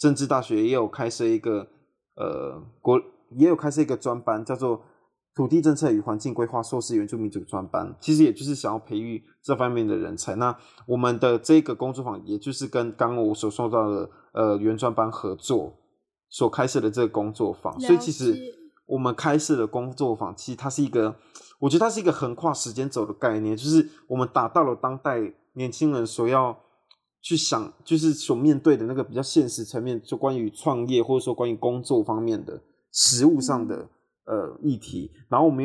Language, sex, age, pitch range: Chinese, male, 20-39, 115-150 Hz